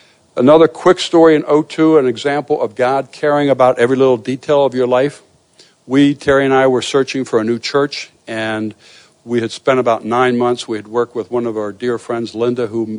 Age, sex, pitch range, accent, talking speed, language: 60-79, male, 110-130 Hz, American, 210 wpm, English